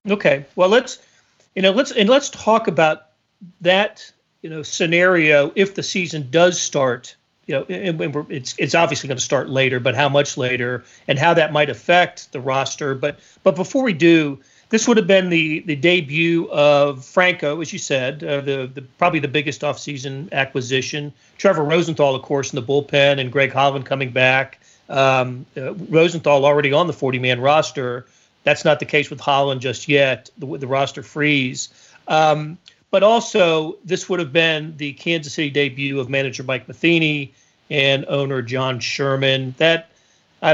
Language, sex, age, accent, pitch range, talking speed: English, male, 40-59, American, 135-165 Hz, 180 wpm